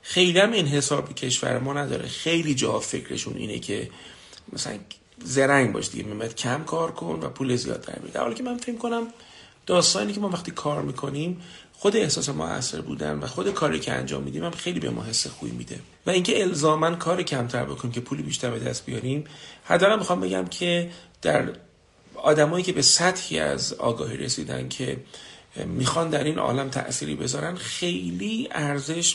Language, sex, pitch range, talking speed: Persian, male, 110-175 Hz, 175 wpm